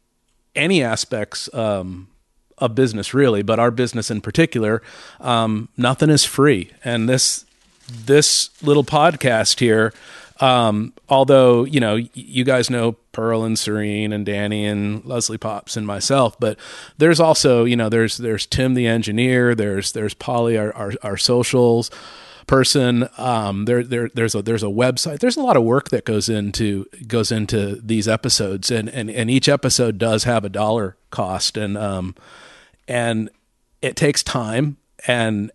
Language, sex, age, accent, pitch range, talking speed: English, male, 40-59, American, 110-130 Hz, 155 wpm